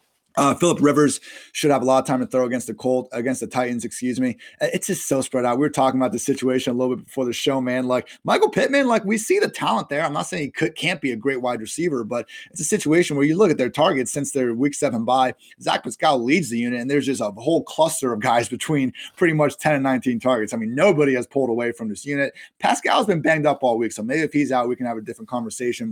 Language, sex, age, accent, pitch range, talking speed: English, male, 30-49, American, 120-150 Hz, 275 wpm